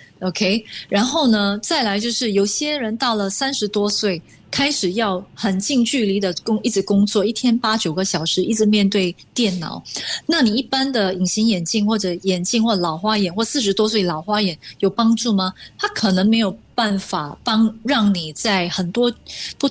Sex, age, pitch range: female, 20-39, 185-235 Hz